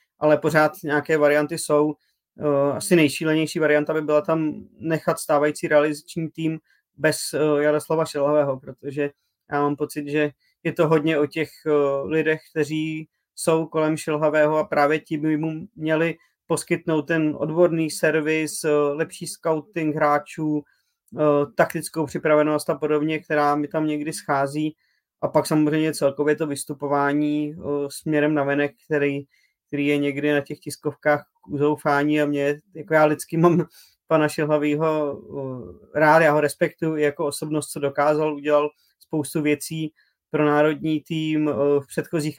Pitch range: 150-160 Hz